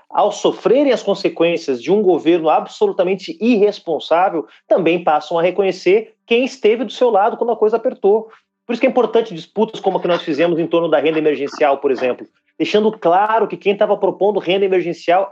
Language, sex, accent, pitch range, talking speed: Portuguese, male, Brazilian, 170-220 Hz, 190 wpm